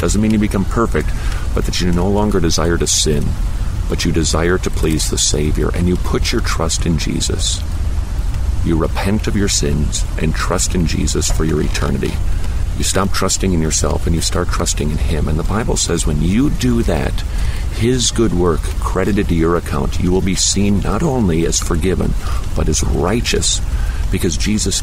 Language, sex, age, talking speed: English, male, 50-69, 190 wpm